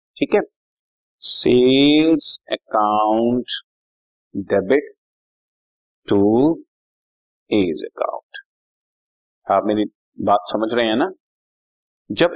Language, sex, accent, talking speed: Hindi, male, native, 80 wpm